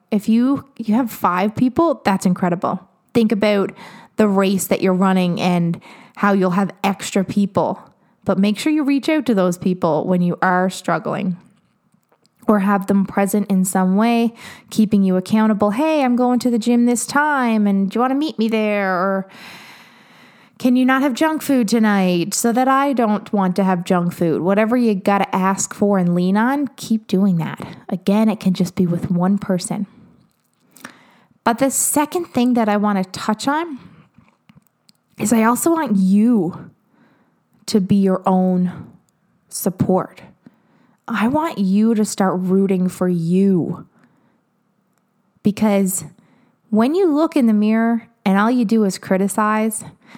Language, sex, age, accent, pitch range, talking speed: English, female, 20-39, American, 190-235 Hz, 165 wpm